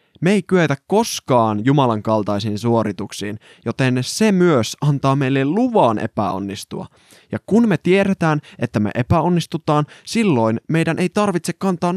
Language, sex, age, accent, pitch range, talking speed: Finnish, male, 20-39, native, 115-165 Hz, 130 wpm